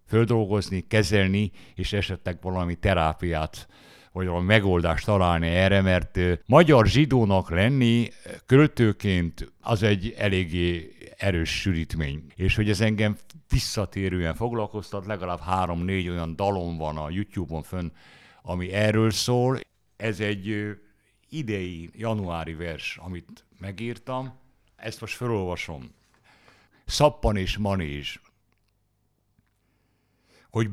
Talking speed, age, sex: 100 wpm, 60-79, male